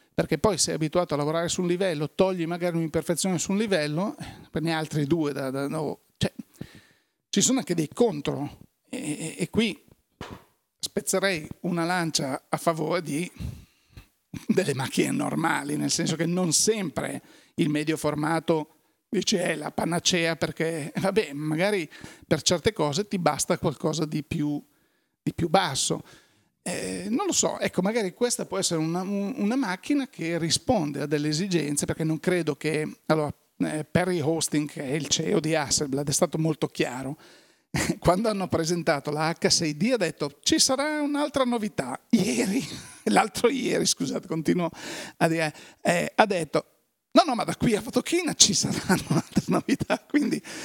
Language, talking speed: Italian, 160 wpm